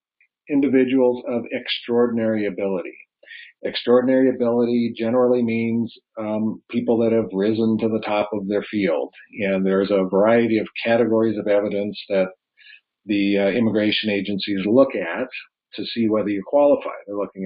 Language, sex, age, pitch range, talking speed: English, male, 50-69, 100-115 Hz, 140 wpm